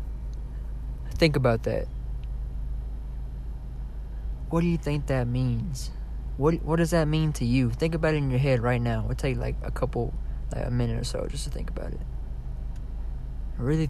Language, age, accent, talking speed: English, 20-39, American, 175 wpm